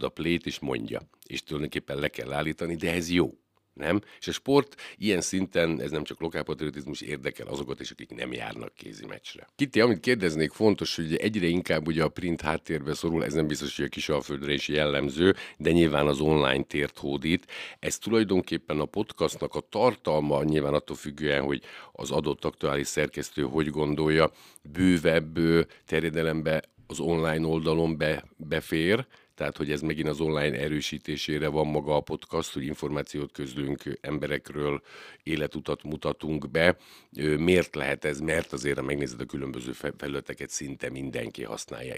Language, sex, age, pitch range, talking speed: Hungarian, male, 50-69, 70-80 Hz, 155 wpm